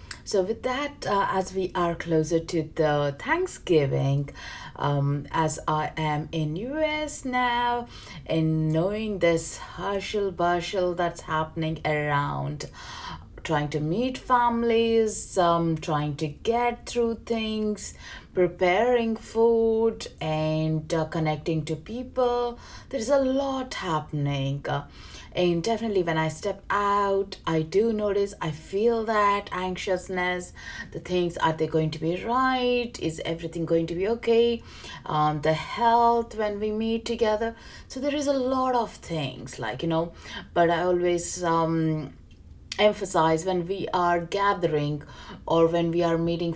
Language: English